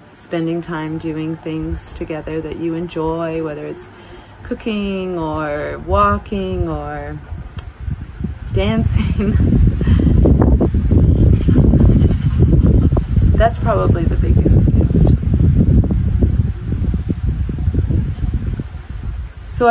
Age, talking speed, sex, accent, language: 30-49, 65 wpm, female, American, English